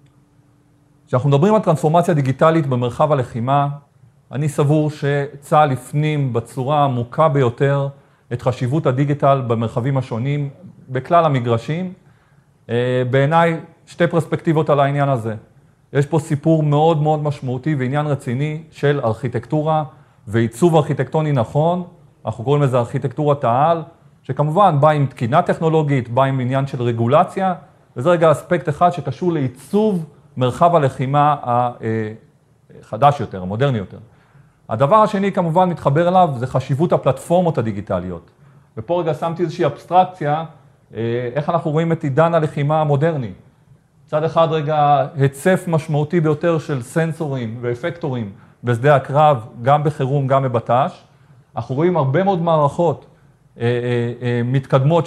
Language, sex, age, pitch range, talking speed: Hebrew, male, 40-59, 130-160 Hz, 120 wpm